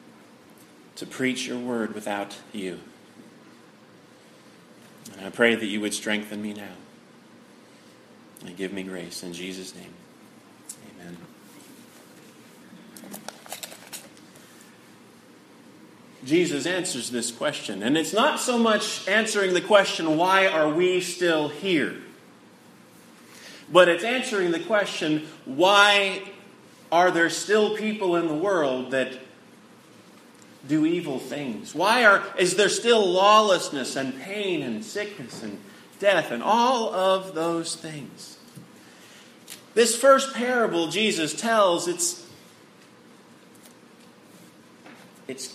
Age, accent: 30-49, American